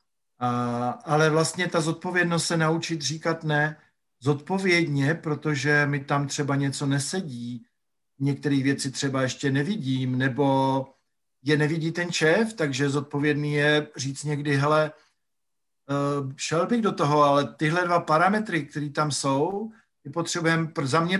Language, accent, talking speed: Czech, native, 135 wpm